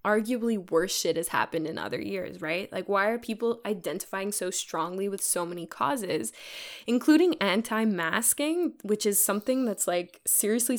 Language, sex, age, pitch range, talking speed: English, female, 10-29, 190-230 Hz, 155 wpm